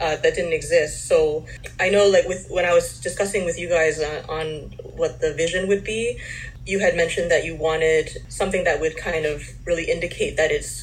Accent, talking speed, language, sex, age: American, 210 wpm, English, female, 20-39